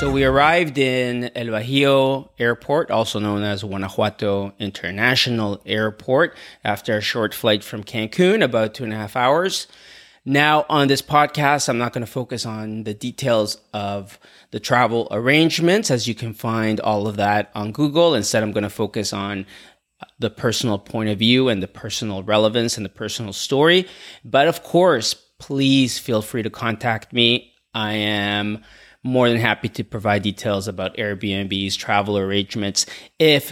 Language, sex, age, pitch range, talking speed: English, male, 30-49, 110-135 Hz, 165 wpm